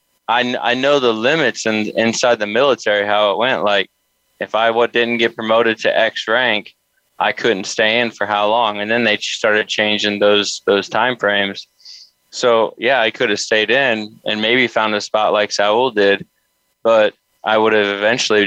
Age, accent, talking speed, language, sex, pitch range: 20-39, American, 180 wpm, English, male, 100-110 Hz